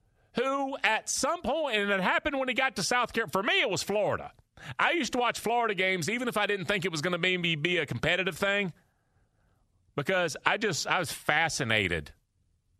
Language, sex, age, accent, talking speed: English, male, 40-59, American, 200 wpm